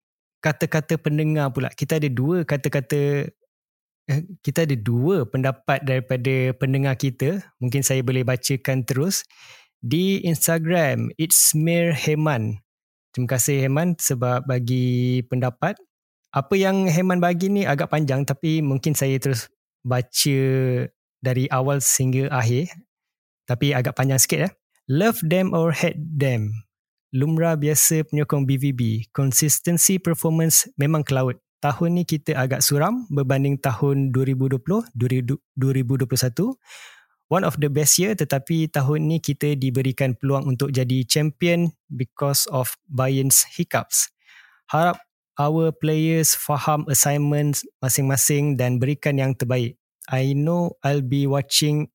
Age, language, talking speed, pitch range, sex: 20-39, Malay, 120 wpm, 130-160 Hz, male